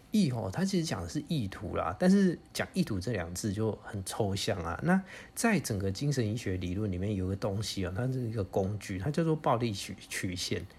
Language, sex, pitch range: Chinese, male, 100-130 Hz